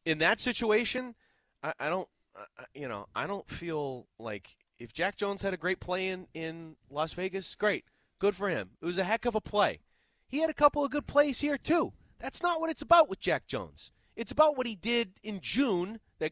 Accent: American